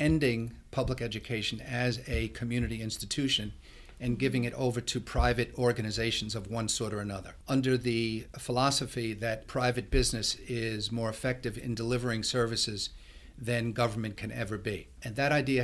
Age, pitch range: 50-69, 115-125 Hz